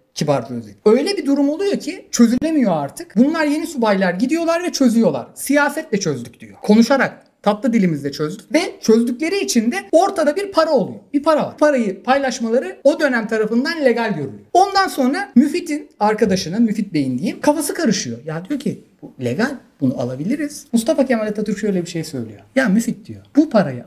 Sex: male